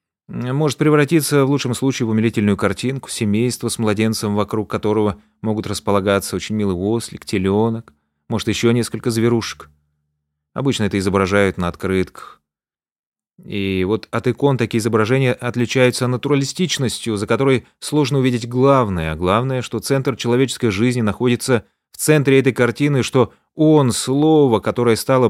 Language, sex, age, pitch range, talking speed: Russian, male, 30-49, 100-125 Hz, 140 wpm